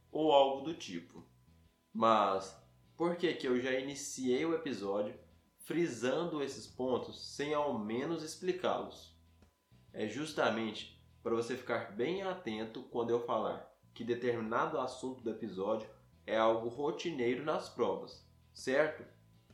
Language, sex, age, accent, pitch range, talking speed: Portuguese, male, 20-39, Brazilian, 105-145 Hz, 125 wpm